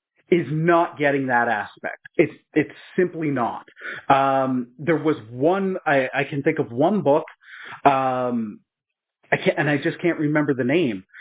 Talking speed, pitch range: 160 wpm, 130-160 Hz